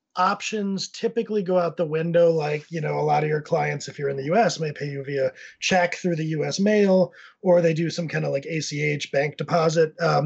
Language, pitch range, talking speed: English, 145-185 Hz, 230 wpm